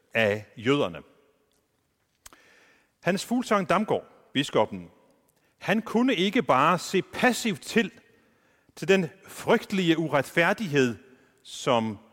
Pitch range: 125-185 Hz